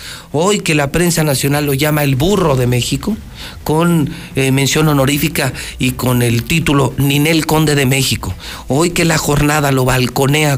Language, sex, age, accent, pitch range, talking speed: Spanish, male, 50-69, Mexican, 105-140 Hz, 165 wpm